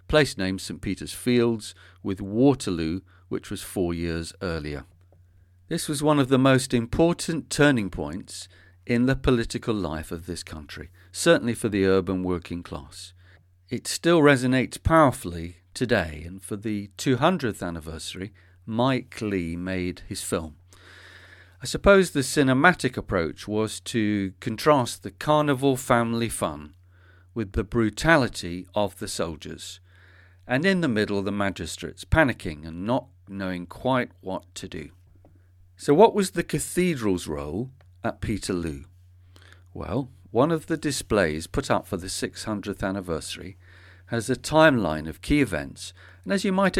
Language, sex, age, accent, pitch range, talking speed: English, male, 40-59, British, 90-125 Hz, 140 wpm